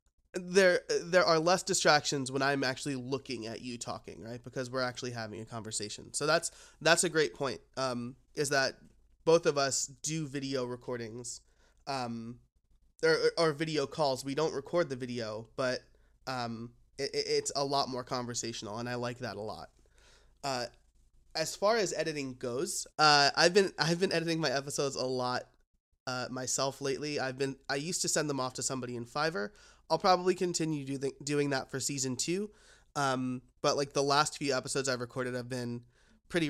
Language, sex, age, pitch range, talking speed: English, male, 20-39, 125-155 Hz, 180 wpm